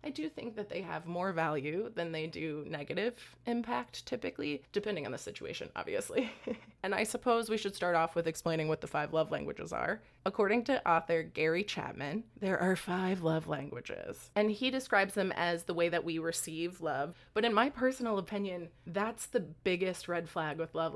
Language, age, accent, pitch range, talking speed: English, 20-39, American, 165-210 Hz, 190 wpm